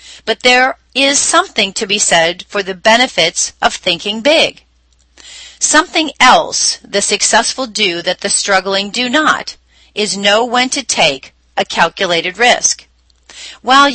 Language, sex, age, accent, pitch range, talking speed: English, female, 40-59, American, 185-260 Hz, 140 wpm